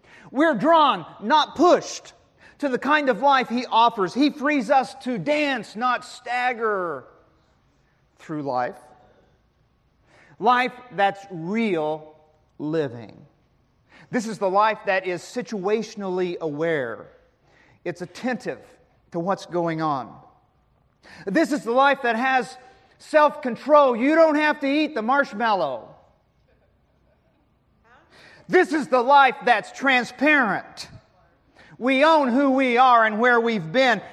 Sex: male